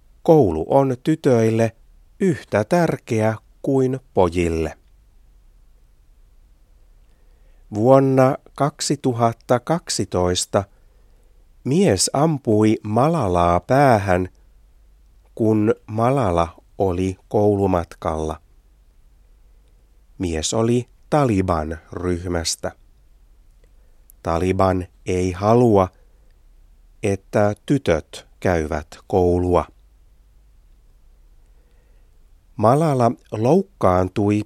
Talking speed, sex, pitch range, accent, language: 50 wpm, male, 85-115 Hz, native, Finnish